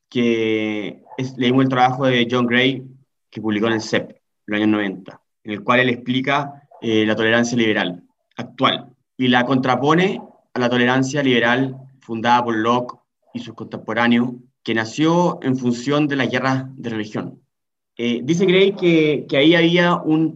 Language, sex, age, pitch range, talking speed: Spanish, male, 20-39, 120-150 Hz, 170 wpm